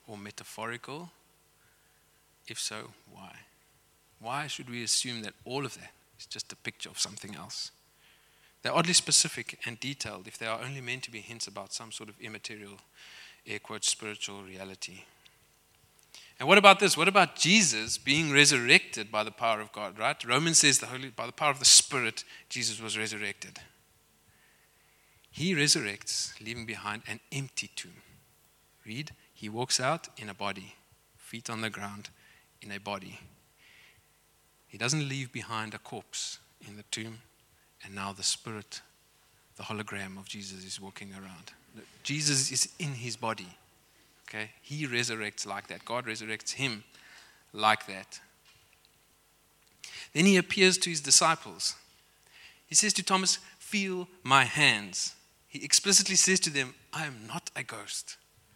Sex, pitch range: male, 105-150 Hz